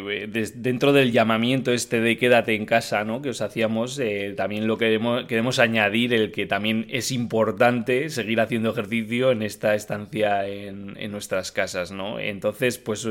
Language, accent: Spanish, Spanish